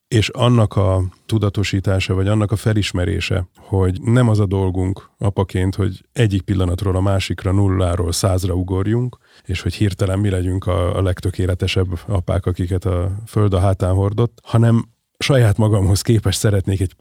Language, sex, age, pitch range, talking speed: Hungarian, male, 30-49, 95-105 Hz, 150 wpm